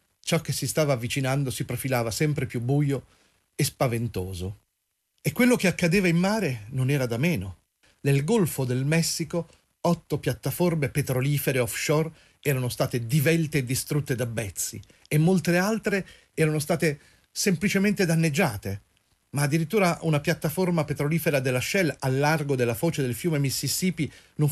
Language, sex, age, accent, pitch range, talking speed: Italian, male, 40-59, native, 125-160 Hz, 145 wpm